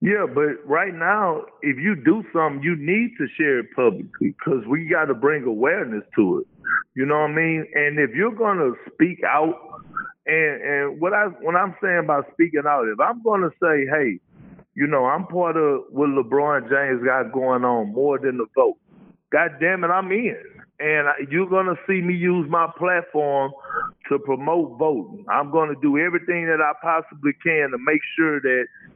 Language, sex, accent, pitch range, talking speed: English, male, American, 145-215 Hz, 200 wpm